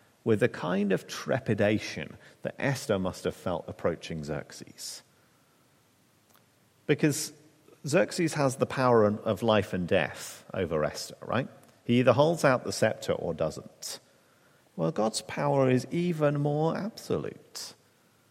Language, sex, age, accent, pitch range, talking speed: English, male, 40-59, British, 105-150 Hz, 130 wpm